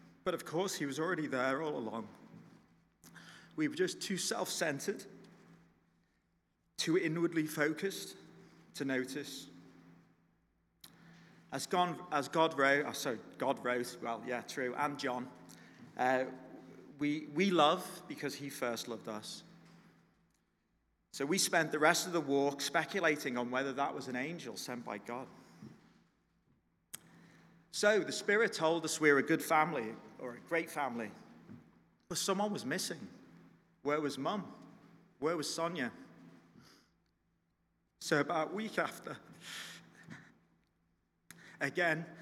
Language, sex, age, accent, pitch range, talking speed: English, male, 30-49, British, 130-170 Hz, 125 wpm